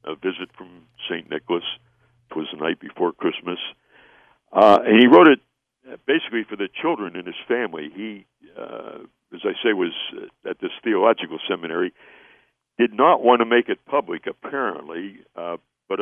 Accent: American